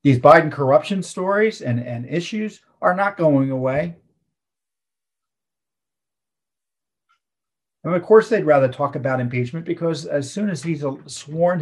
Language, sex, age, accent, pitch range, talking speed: English, male, 50-69, American, 110-160 Hz, 130 wpm